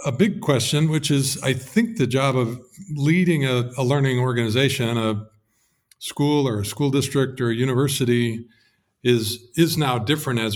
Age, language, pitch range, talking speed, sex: 50-69, English, 115-140 Hz, 165 wpm, male